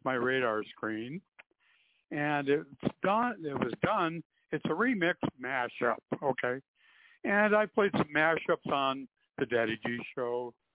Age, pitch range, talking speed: 60-79, 125-180 Hz, 135 wpm